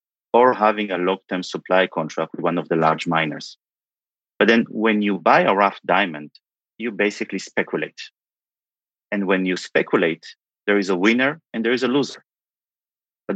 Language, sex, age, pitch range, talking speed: English, male, 40-59, 95-115 Hz, 165 wpm